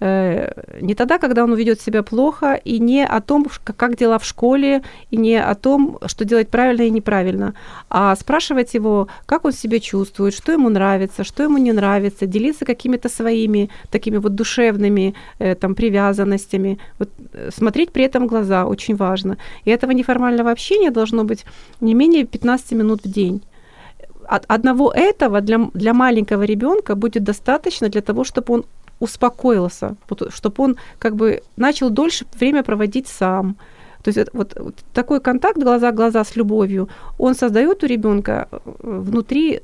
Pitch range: 205-255 Hz